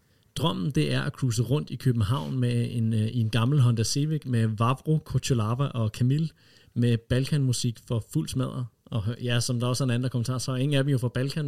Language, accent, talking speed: Danish, native, 225 wpm